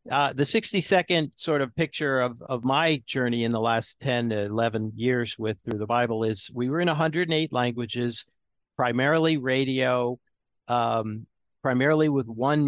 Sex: male